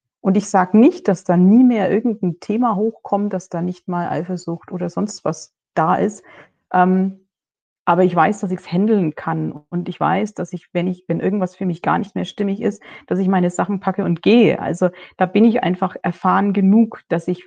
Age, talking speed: 30-49, 210 wpm